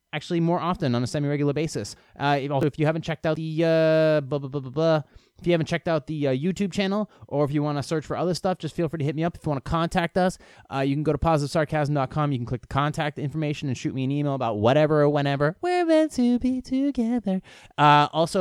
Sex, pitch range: male, 130-170 Hz